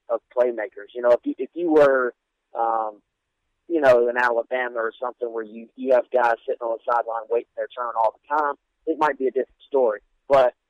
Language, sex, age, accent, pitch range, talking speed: English, male, 30-49, American, 115-145 Hz, 215 wpm